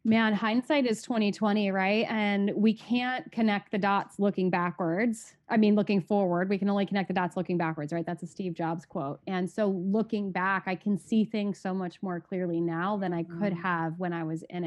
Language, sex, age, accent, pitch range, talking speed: English, female, 20-39, American, 175-210 Hz, 215 wpm